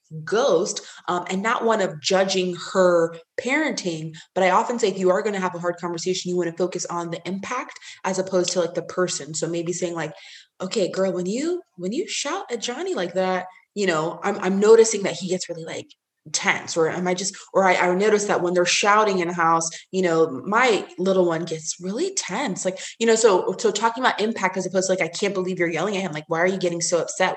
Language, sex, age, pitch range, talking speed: English, female, 20-39, 170-215 Hz, 240 wpm